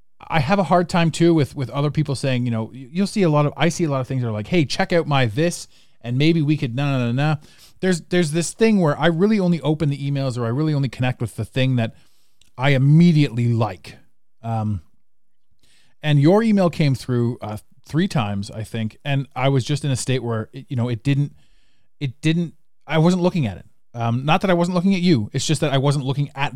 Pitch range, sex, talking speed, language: 115-155 Hz, male, 250 wpm, English